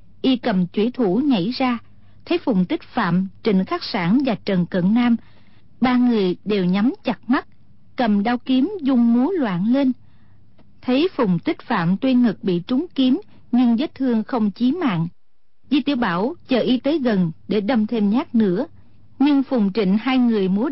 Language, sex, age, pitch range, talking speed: Vietnamese, female, 50-69, 205-260 Hz, 180 wpm